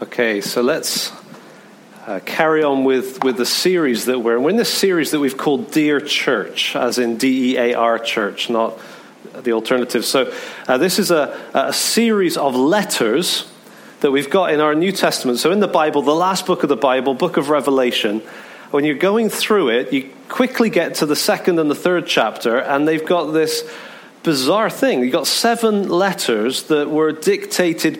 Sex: male